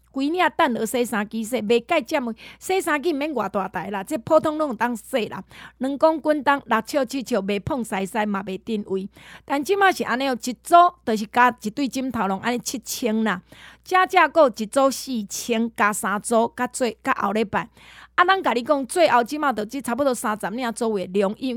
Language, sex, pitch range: Chinese, female, 215-275 Hz